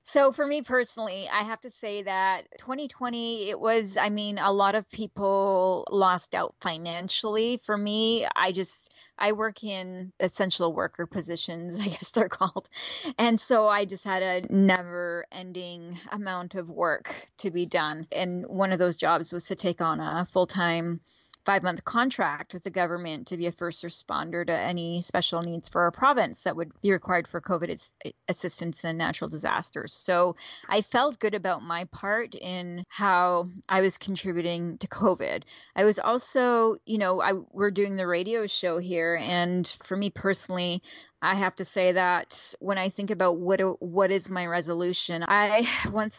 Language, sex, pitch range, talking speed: English, female, 180-205 Hz, 180 wpm